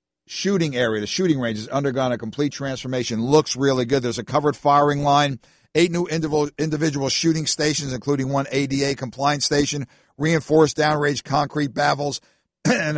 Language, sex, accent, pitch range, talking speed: English, male, American, 130-160 Hz, 155 wpm